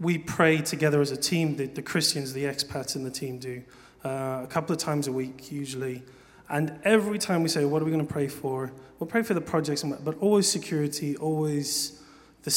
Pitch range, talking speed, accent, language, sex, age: 140-160 Hz, 215 wpm, British, English, male, 30-49